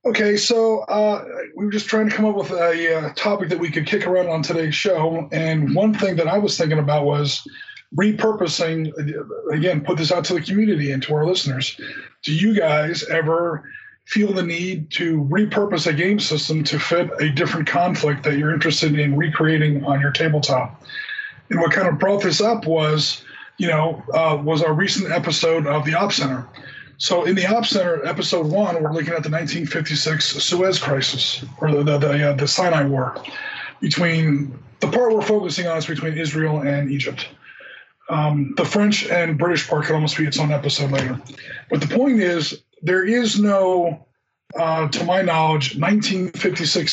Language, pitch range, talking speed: English, 150-185 Hz, 185 wpm